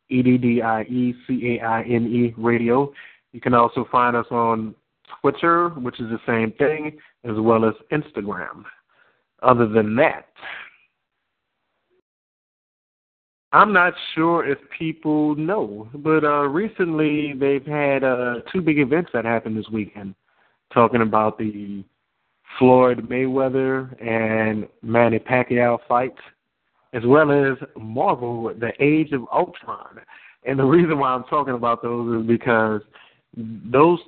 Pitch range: 115-135 Hz